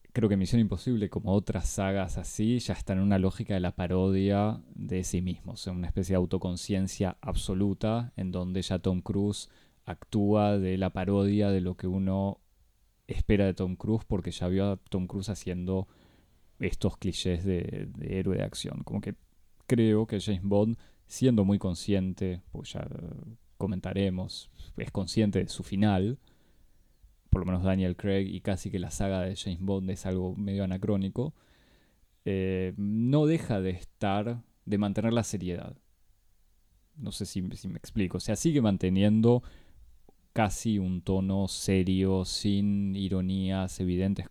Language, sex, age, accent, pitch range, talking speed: Spanish, male, 20-39, Argentinian, 95-105 Hz, 160 wpm